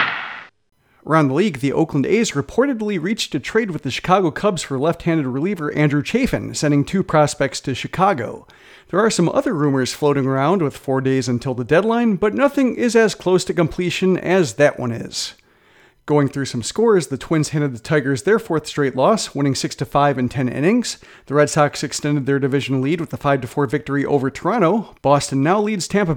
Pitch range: 140-195 Hz